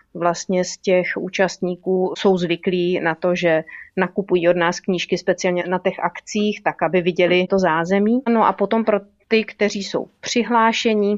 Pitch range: 170-195 Hz